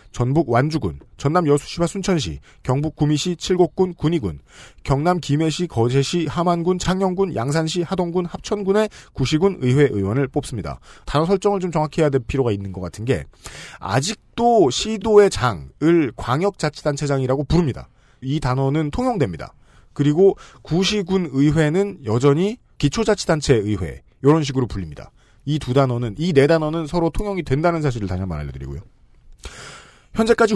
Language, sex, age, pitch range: Korean, male, 40-59, 135-185 Hz